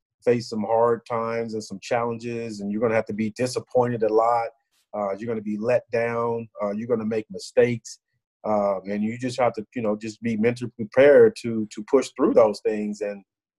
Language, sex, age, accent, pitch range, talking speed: English, male, 30-49, American, 105-125 Hz, 215 wpm